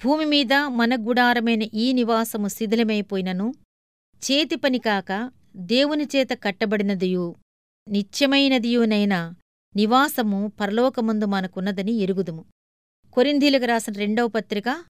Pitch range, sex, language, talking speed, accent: 195-250 Hz, female, Telugu, 75 wpm, native